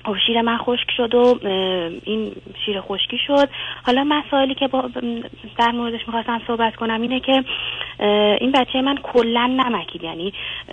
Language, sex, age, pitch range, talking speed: Persian, female, 30-49, 195-235 Hz, 145 wpm